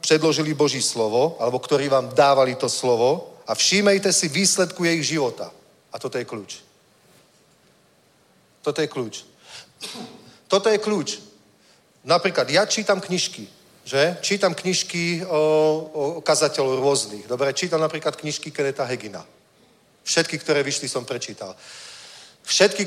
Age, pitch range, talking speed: 40-59, 130-160 Hz, 125 wpm